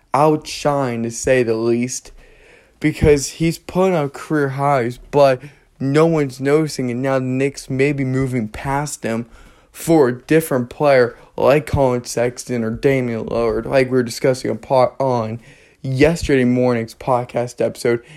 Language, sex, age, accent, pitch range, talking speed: English, male, 20-39, American, 125-150 Hz, 150 wpm